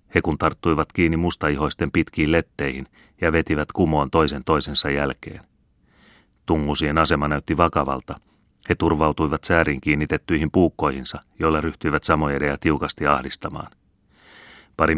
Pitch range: 75-85 Hz